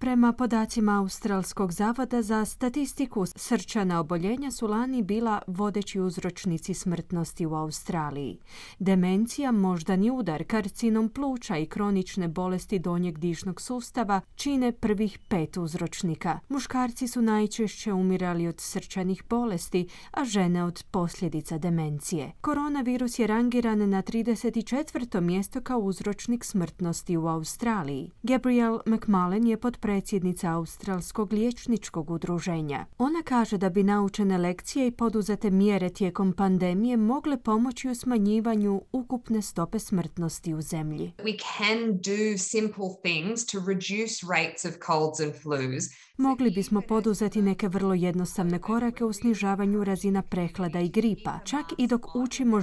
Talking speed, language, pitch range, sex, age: 115 wpm, Croatian, 180-230 Hz, female, 30-49